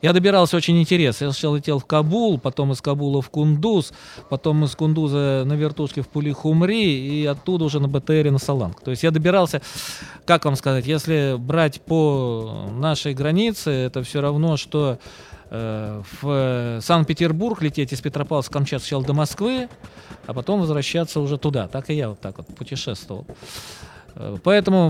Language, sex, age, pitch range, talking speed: Russian, male, 20-39, 130-160 Hz, 160 wpm